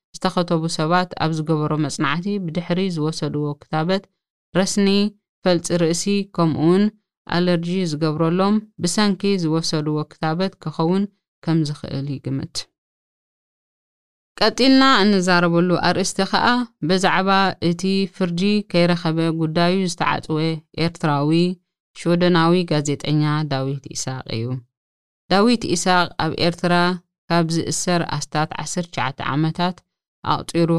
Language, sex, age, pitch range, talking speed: Amharic, female, 20-39, 155-190 Hz, 95 wpm